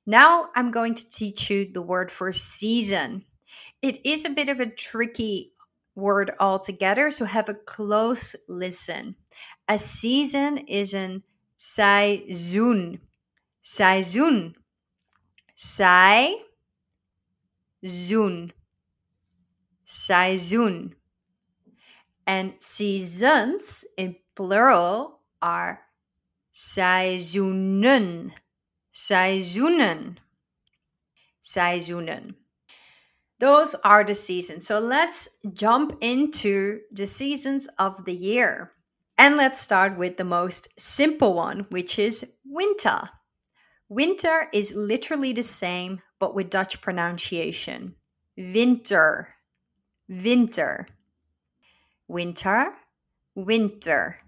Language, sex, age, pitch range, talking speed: Dutch, female, 30-49, 180-240 Hz, 85 wpm